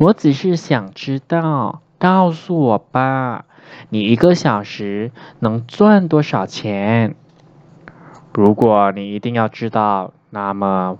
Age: 20-39